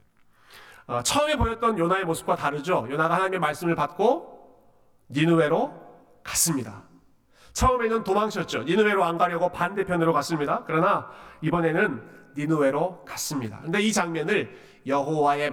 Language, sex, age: Korean, male, 40-59